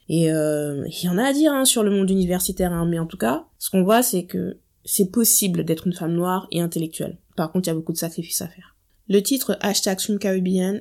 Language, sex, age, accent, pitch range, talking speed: French, female, 20-39, French, 170-215 Hz, 255 wpm